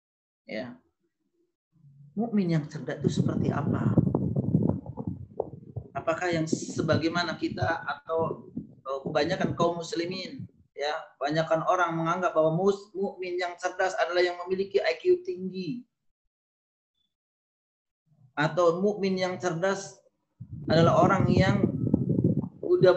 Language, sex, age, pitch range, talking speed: Malay, male, 30-49, 150-195 Hz, 95 wpm